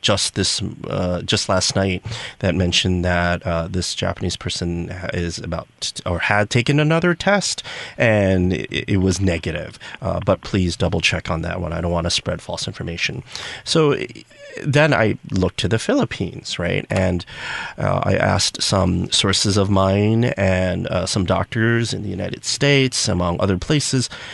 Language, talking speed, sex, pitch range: English, 170 wpm, male, 90-115 Hz